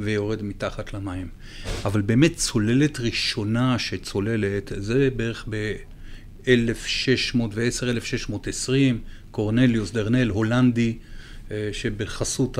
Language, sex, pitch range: Hebrew, male, 105-125 Hz